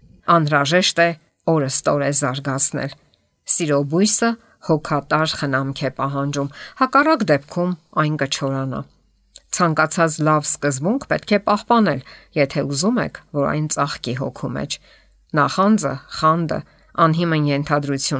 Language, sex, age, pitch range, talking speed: English, female, 50-69, 140-170 Hz, 90 wpm